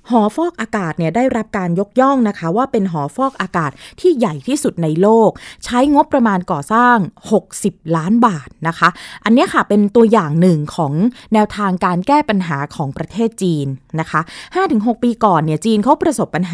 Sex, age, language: female, 20-39, Thai